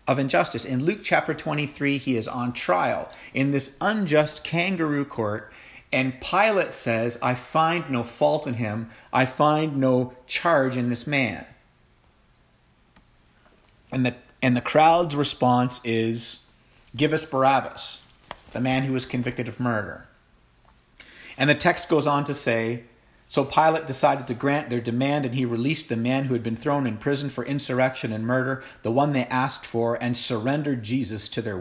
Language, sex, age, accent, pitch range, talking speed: English, male, 40-59, American, 120-145 Hz, 165 wpm